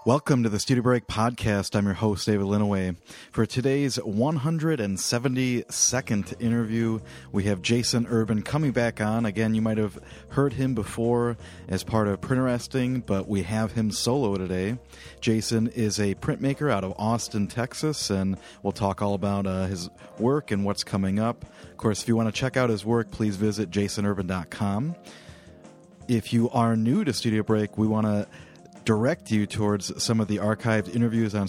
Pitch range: 100-120 Hz